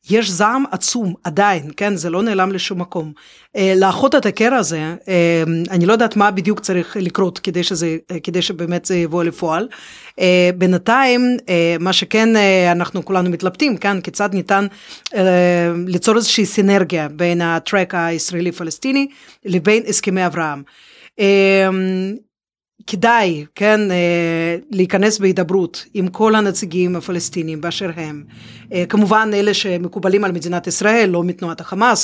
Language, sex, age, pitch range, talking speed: Hebrew, female, 30-49, 175-215 Hz, 140 wpm